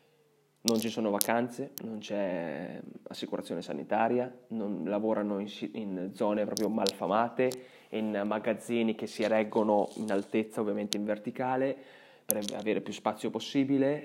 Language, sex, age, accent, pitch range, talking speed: Italian, male, 20-39, native, 110-130 Hz, 130 wpm